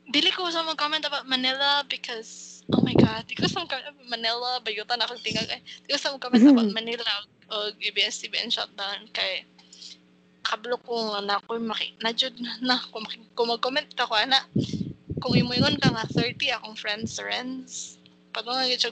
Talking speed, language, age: 165 wpm, English, 20-39